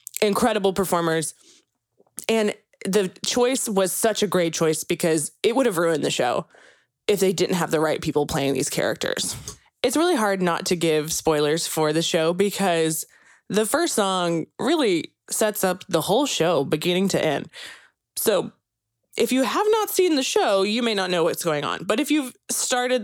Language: English